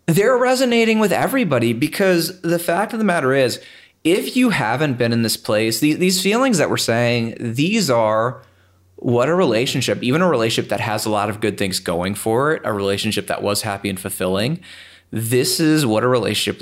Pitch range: 105-140 Hz